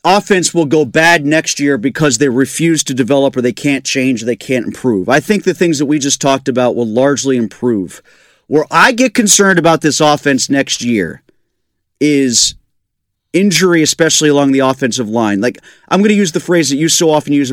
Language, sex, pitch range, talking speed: English, male, 125-160 Hz, 200 wpm